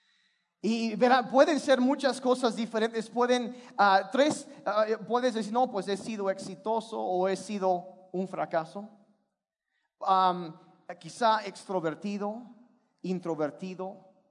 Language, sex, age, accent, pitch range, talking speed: Spanish, male, 40-59, Mexican, 175-235 Hz, 115 wpm